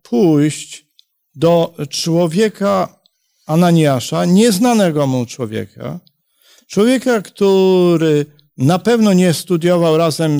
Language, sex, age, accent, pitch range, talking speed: Polish, male, 50-69, native, 145-190 Hz, 80 wpm